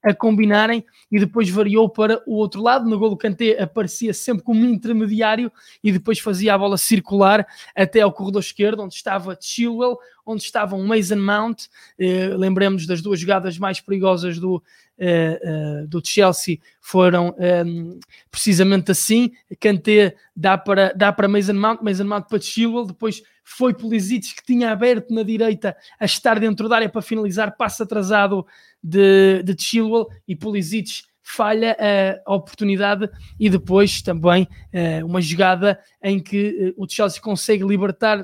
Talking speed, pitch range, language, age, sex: 160 wpm, 190-220 Hz, Portuguese, 20-39, male